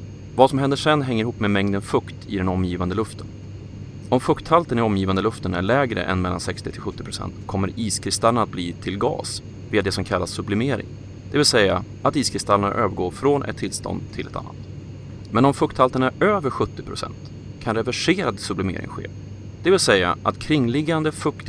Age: 30-49